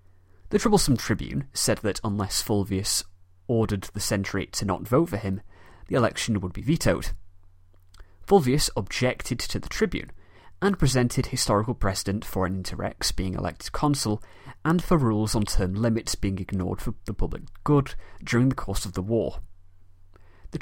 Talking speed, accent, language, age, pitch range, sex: 155 wpm, British, English, 30-49, 90-125 Hz, male